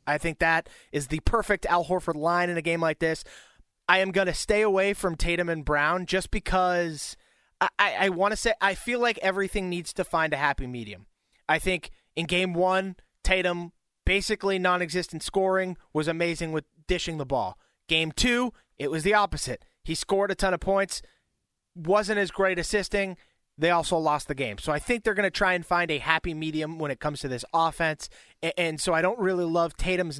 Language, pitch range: English, 155-185 Hz